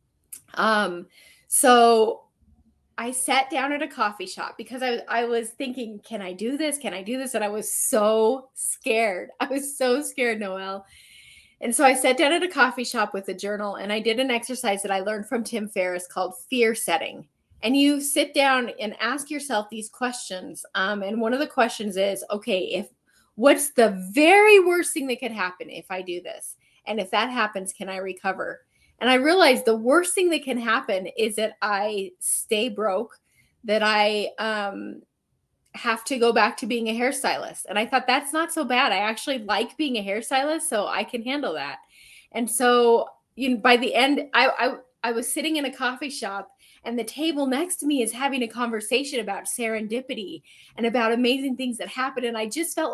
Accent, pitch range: American, 210-265 Hz